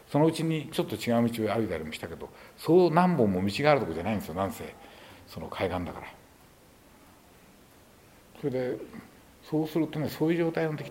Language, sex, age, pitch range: Japanese, male, 60-79, 100-140 Hz